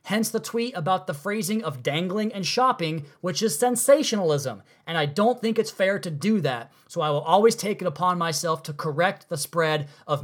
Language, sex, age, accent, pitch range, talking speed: English, male, 20-39, American, 155-200 Hz, 205 wpm